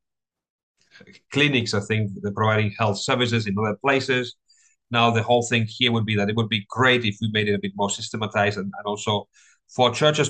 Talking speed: 205 wpm